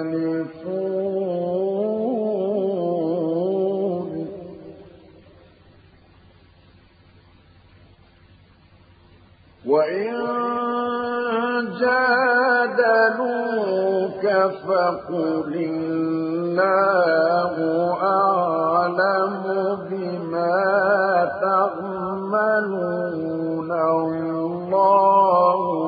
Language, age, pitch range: Arabic, 50-69, 160-190 Hz